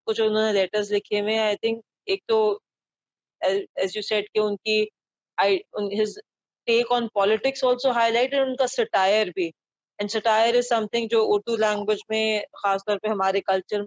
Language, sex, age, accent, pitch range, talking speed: English, female, 20-39, Indian, 190-225 Hz, 140 wpm